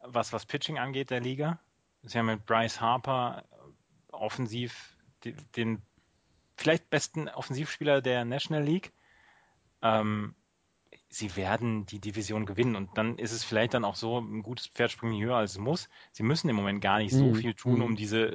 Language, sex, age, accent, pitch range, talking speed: German, male, 30-49, German, 110-130 Hz, 175 wpm